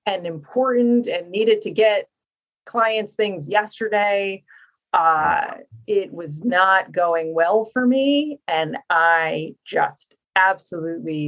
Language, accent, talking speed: English, American, 110 wpm